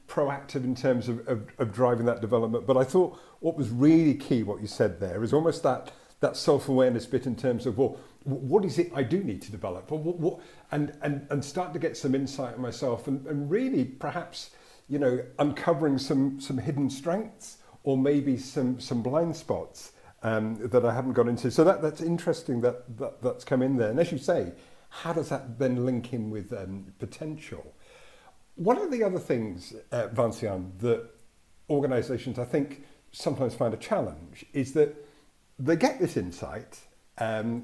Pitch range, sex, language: 120-150 Hz, male, English